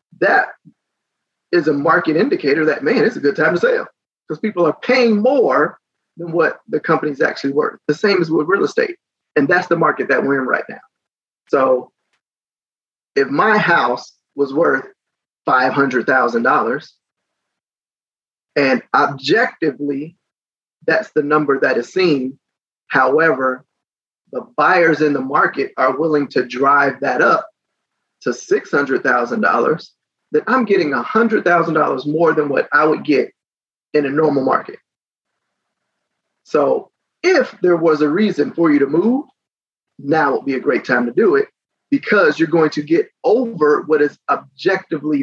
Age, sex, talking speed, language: 30-49, male, 145 wpm, English